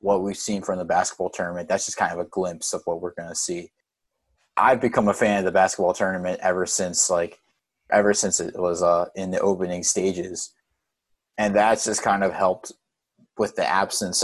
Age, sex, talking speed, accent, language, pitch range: 20-39, male, 200 wpm, American, English, 95-105 Hz